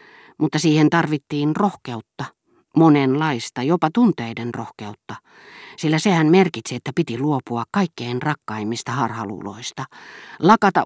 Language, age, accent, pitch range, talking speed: Finnish, 50-69, native, 125-185 Hz, 100 wpm